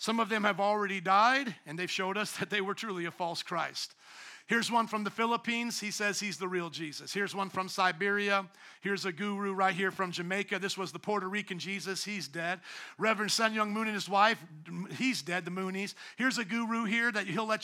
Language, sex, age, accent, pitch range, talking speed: English, male, 50-69, American, 190-250 Hz, 220 wpm